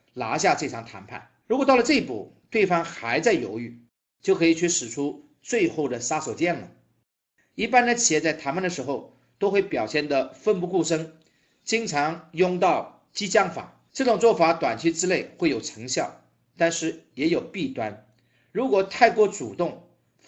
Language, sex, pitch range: Chinese, male, 135-200 Hz